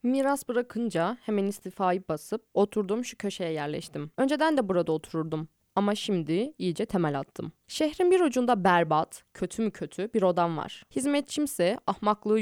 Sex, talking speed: female, 145 wpm